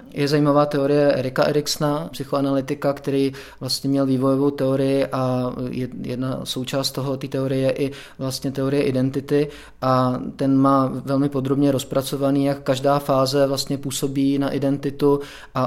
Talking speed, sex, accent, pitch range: 140 wpm, male, native, 130-145 Hz